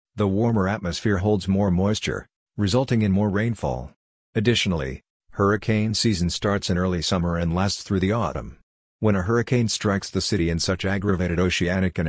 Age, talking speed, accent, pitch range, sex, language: 50-69, 165 wpm, American, 90-105 Hz, male, English